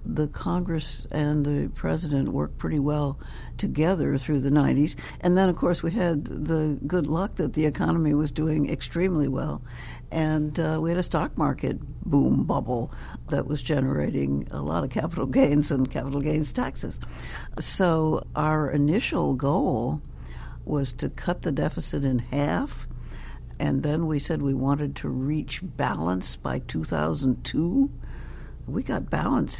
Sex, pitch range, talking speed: female, 110-160 Hz, 150 wpm